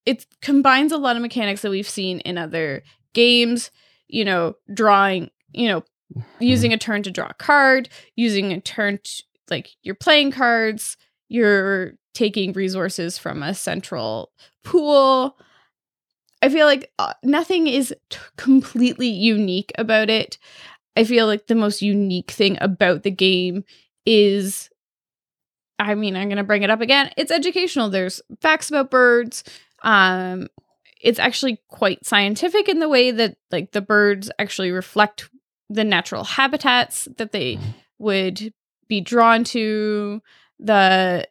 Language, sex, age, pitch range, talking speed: English, female, 20-39, 195-245 Hz, 140 wpm